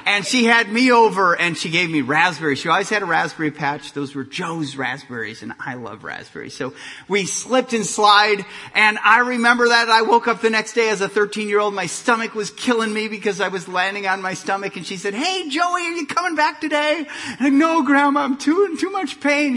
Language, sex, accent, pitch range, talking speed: English, male, American, 135-210 Hz, 230 wpm